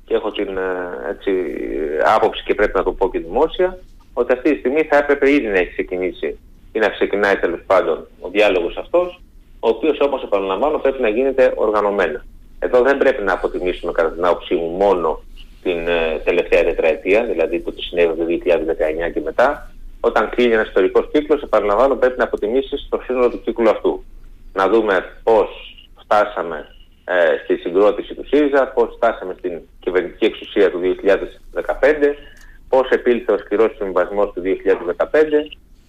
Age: 30-49